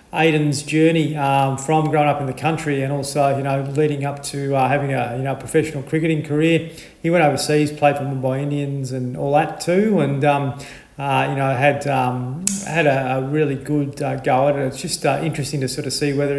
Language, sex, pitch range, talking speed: English, male, 135-155 Hz, 220 wpm